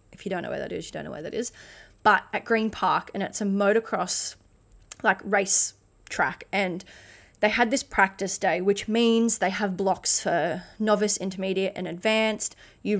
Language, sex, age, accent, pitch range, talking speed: English, female, 20-39, Australian, 190-230 Hz, 190 wpm